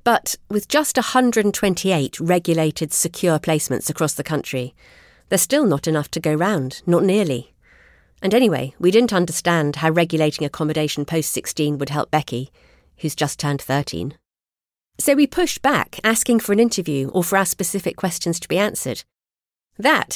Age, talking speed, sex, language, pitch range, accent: 40-59, 155 wpm, female, English, 145-190 Hz, British